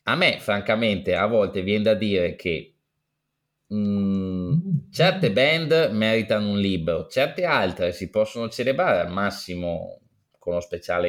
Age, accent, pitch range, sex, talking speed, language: 20-39, native, 95-110 Hz, male, 135 wpm, Italian